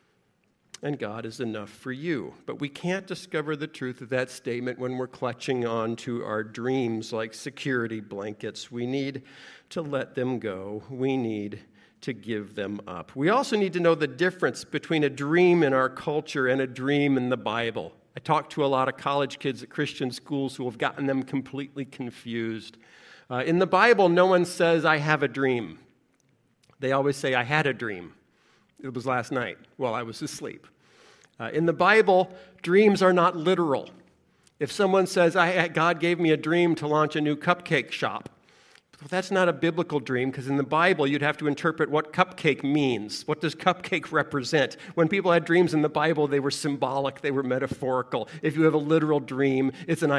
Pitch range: 125-165 Hz